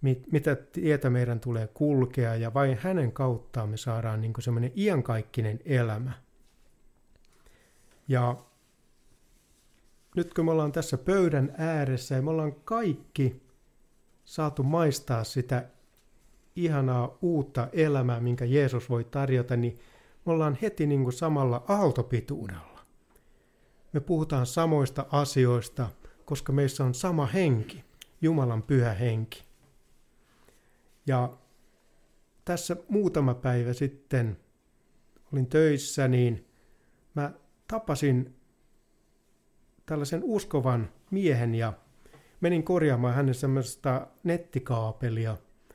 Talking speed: 95 wpm